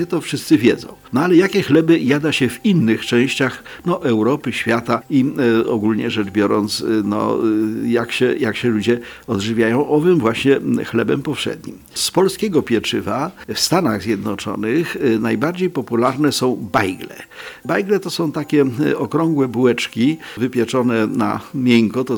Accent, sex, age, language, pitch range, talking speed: native, male, 50-69, Polish, 115-150 Hz, 140 wpm